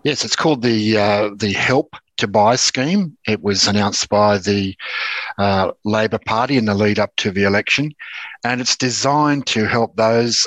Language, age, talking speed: English, 60-79, 180 wpm